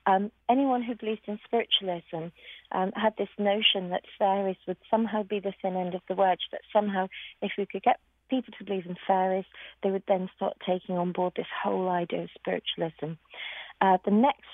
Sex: female